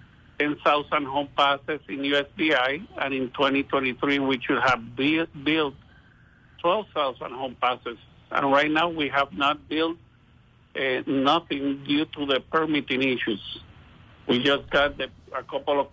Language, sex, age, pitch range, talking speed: English, male, 60-79, 130-150 Hz, 130 wpm